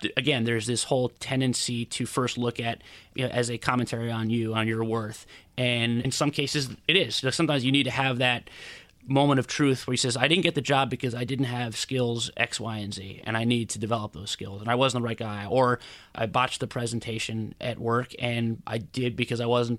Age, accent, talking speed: 20-39, American, 235 wpm